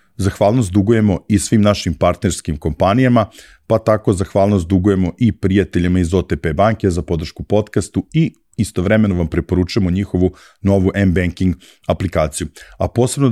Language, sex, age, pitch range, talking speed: English, male, 40-59, 85-100 Hz, 130 wpm